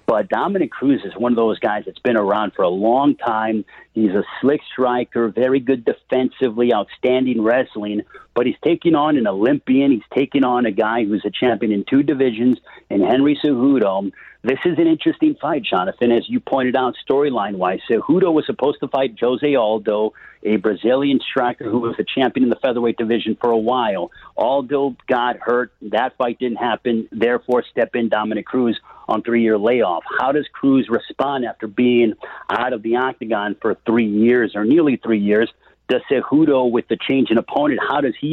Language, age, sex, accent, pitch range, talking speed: English, 50-69, male, American, 115-135 Hz, 185 wpm